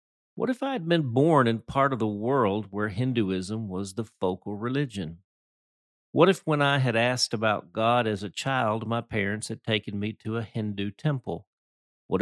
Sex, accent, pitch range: male, American, 100-125 Hz